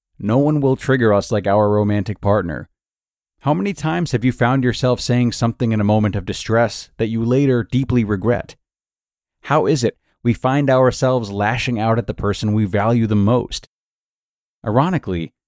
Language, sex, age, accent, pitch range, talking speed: English, male, 30-49, American, 100-125 Hz, 170 wpm